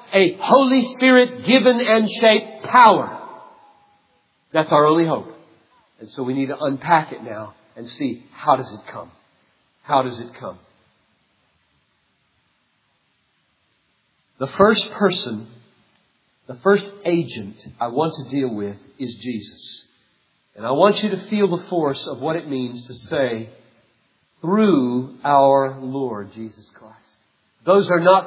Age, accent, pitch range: 50-69, American, 120-170 Hz